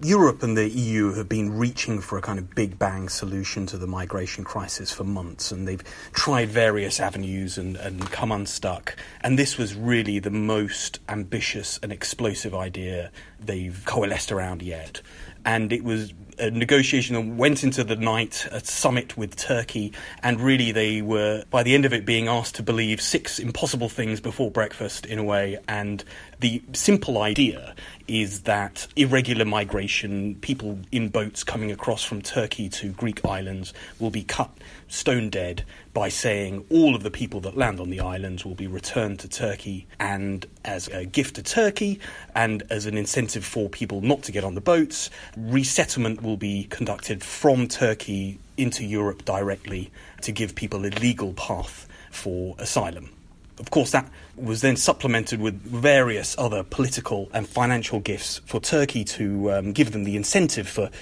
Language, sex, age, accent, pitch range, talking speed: English, male, 30-49, British, 95-120 Hz, 170 wpm